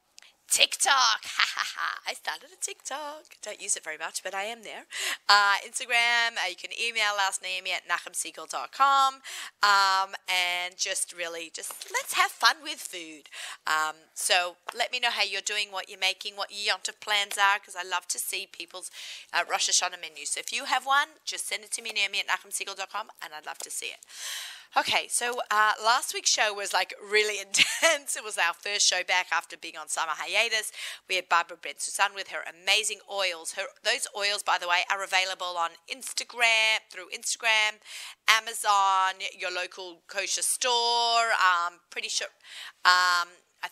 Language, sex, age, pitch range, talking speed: English, female, 30-49, 180-235 Hz, 185 wpm